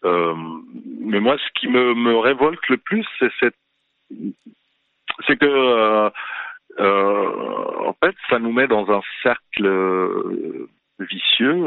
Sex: male